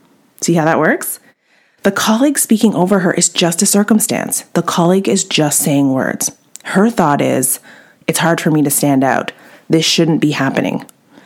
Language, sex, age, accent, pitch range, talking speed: English, female, 30-49, American, 150-210 Hz, 175 wpm